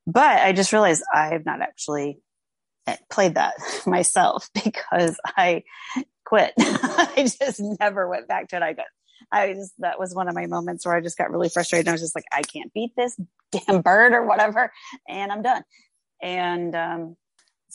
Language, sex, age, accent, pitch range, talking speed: English, female, 30-49, American, 165-210 Hz, 185 wpm